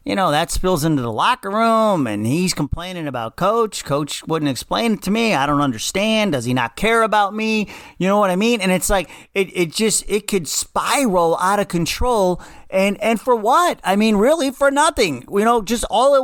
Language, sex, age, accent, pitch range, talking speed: English, male, 40-59, American, 155-210 Hz, 220 wpm